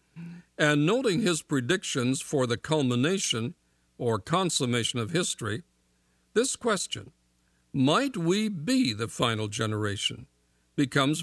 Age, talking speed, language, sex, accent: 60-79, 105 wpm, English, male, American